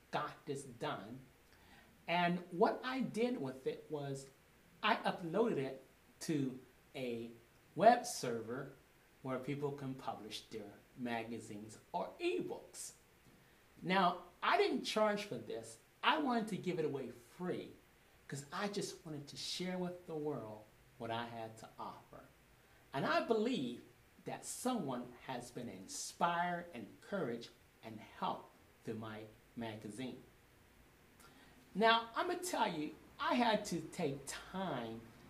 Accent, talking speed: American, 135 wpm